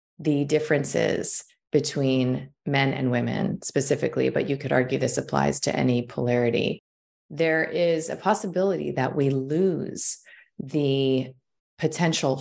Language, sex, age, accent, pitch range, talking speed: English, female, 30-49, American, 130-155 Hz, 120 wpm